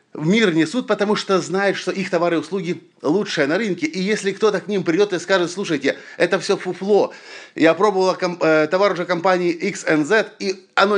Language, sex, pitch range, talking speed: Russian, male, 135-190 Hz, 195 wpm